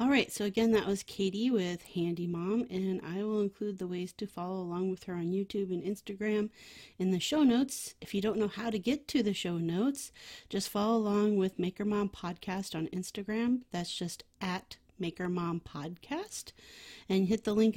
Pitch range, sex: 175-215 Hz, female